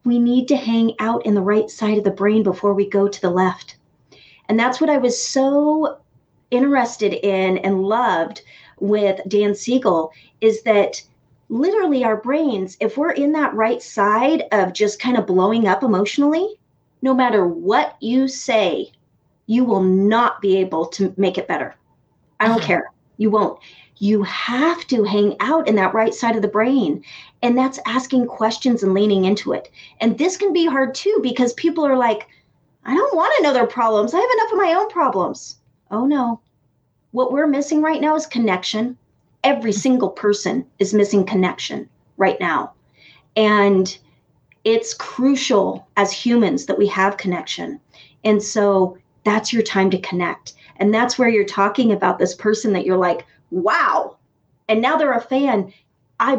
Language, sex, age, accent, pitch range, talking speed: English, female, 40-59, American, 195-260 Hz, 170 wpm